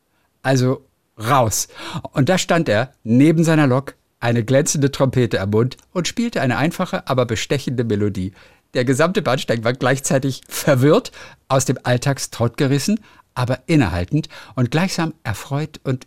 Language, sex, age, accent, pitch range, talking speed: German, male, 50-69, German, 110-140 Hz, 140 wpm